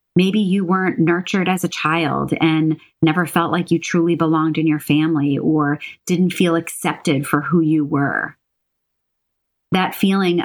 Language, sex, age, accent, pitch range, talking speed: English, female, 30-49, American, 155-190 Hz, 155 wpm